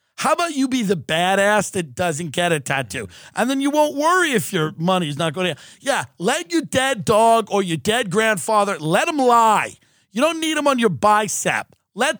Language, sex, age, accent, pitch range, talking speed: English, male, 50-69, American, 195-280 Hz, 210 wpm